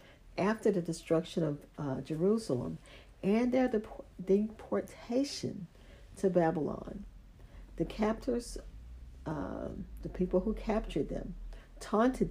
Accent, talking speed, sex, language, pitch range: American, 95 wpm, female, English, 150-190 Hz